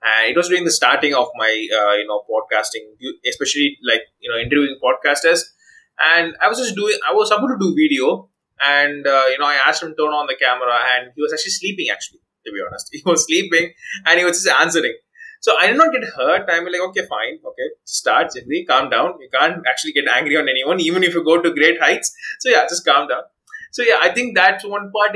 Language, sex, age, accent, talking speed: English, male, 20-39, Indian, 235 wpm